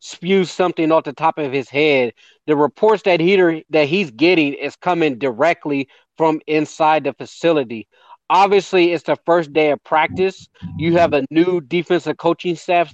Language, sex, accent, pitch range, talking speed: English, male, American, 145-170 Hz, 165 wpm